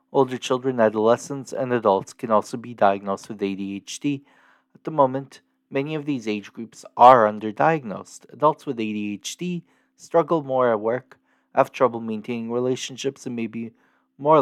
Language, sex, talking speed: English, male, 150 wpm